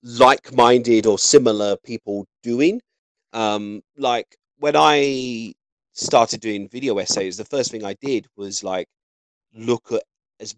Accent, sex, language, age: British, male, English, 30-49